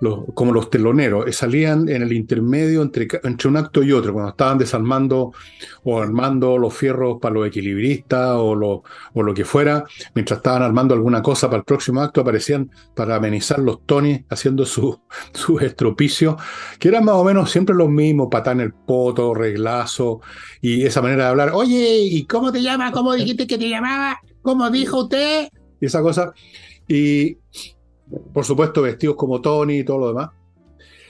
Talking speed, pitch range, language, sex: 175 wpm, 115-150 Hz, Spanish, male